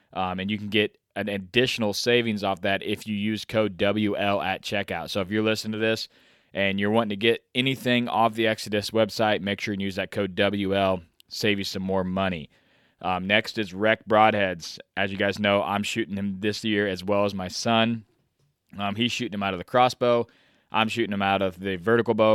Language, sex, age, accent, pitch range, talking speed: English, male, 20-39, American, 100-110 Hz, 215 wpm